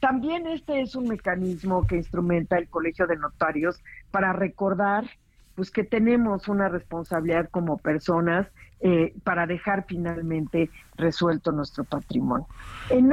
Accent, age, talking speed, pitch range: Mexican, 50-69, 125 wpm, 160-205 Hz